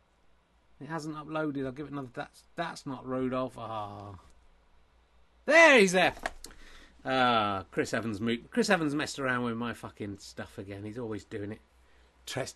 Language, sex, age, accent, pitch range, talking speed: English, male, 30-49, British, 110-175 Hz, 160 wpm